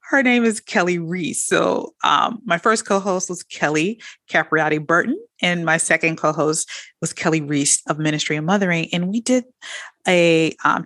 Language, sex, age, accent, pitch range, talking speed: English, female, 30-49, American, 150-180 Hz, 165 wpm